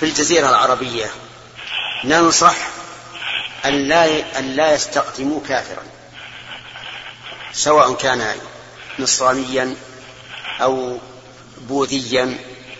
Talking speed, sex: 60 wpm, male